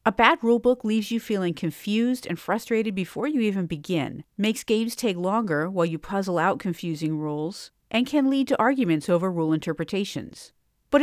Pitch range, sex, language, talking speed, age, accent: 175-265 Hz, female, English, 175 wpm, 50-69, American